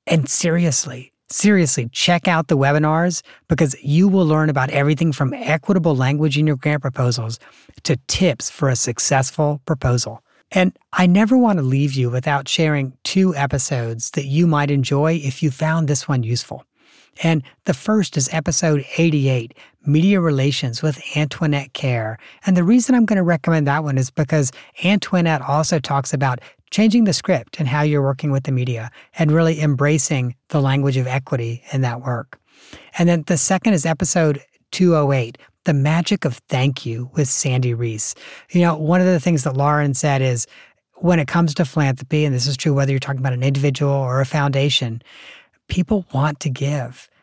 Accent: American